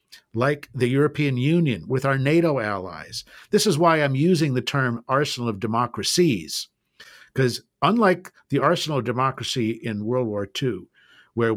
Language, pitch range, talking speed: English, 115-150 Hz, 150 wpm